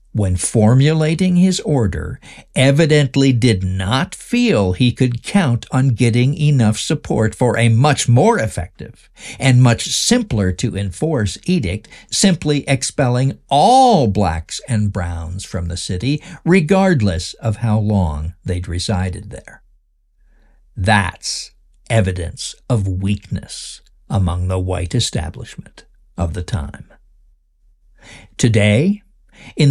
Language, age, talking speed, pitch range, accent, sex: English, 60-79, 115 wpm, 95-130 Hz, American, male